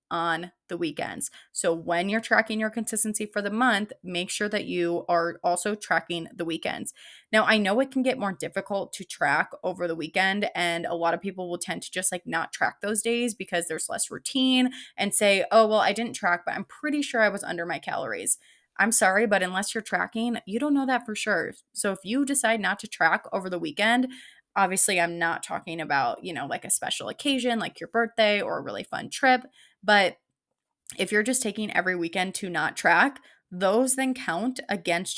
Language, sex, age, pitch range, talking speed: English, female, 20-39, 175-235 Hz, 210 wpm